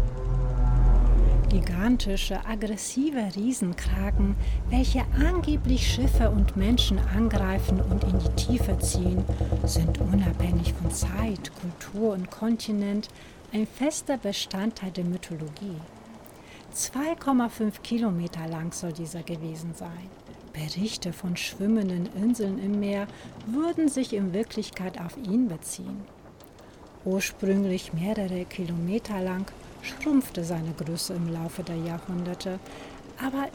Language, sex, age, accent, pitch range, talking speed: German, female, 60-79, German, 170-220 Hz, 105 wpm